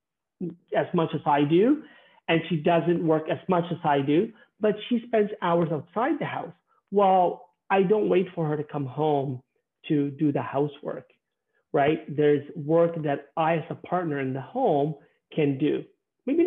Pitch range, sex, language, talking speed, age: 150-185 Hz, male, English, 175 wpm, 40-59